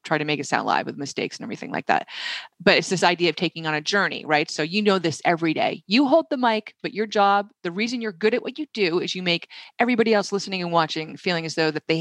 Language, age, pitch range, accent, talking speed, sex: English, 30-49, 155-200 Hz, American, 280 wpm, female